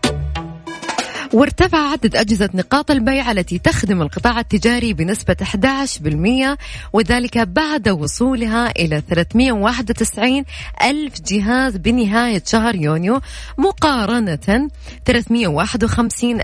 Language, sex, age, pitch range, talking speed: Arabic, female, 20-39, 190-260 Hz, 85 wpm